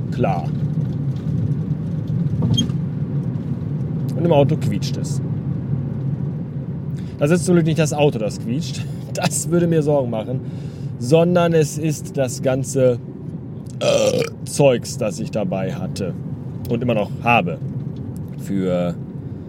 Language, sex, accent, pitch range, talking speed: German, male, German, 140-190 Hz, 105 wpm